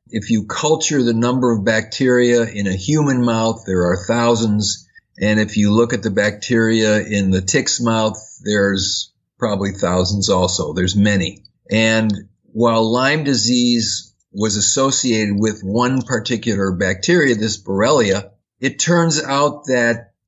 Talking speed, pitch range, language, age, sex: 140 wpm, 105-125 Hz, English, 50-69, male